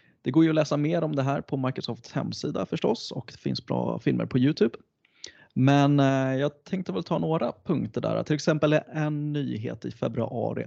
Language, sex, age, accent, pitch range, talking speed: Swedish, male, 30-49, native, 120-150 Hz, 190 wpm